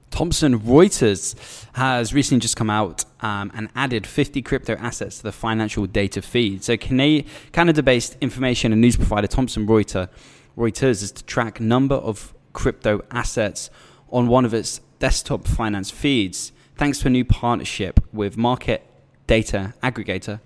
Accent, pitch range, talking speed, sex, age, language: British, 100-125 Hz, 145 wpm, male, 10-29, English